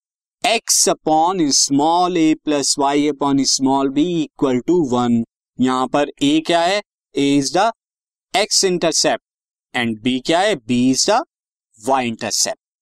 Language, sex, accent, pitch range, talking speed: Hindi, male, native, 130-185 Hz, 125 wpm